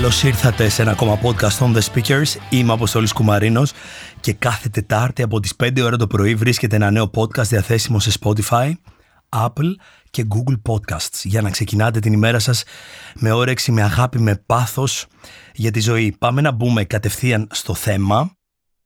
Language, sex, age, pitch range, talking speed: Greek, male, 30-49, 105-130 Hz, 170 wpm